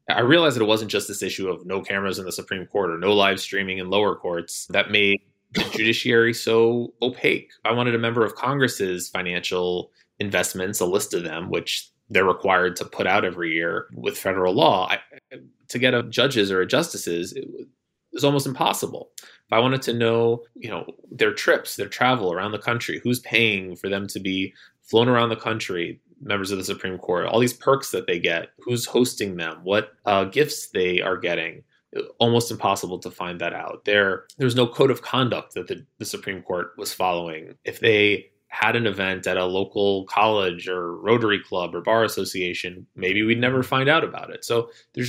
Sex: male